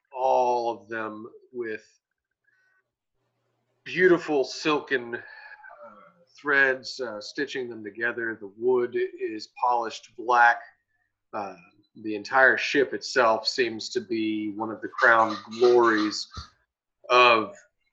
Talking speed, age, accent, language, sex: 105 wpm, 40-59, American, English, male